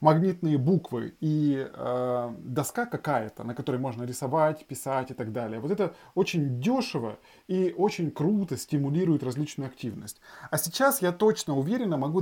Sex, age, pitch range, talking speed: male, 20-39, 125-170 Hz, 145 wpm